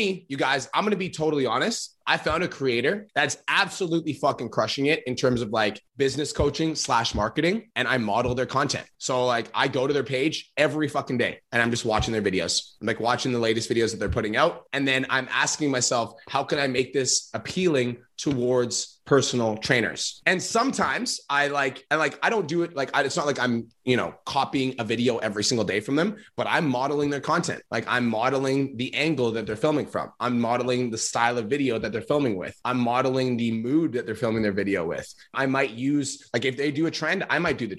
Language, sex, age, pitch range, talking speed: English, male, 20-39, 120-150 Hz, 225 wpm